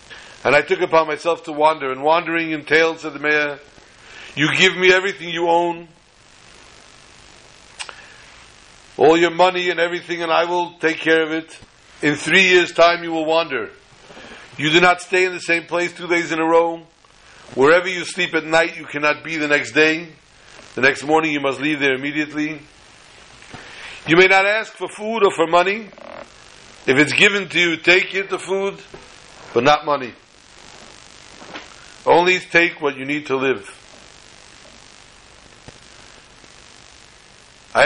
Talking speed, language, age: 155 wpm, English, 50-69